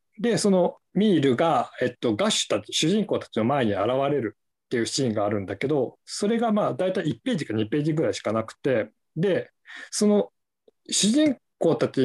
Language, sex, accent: Japanese, male, native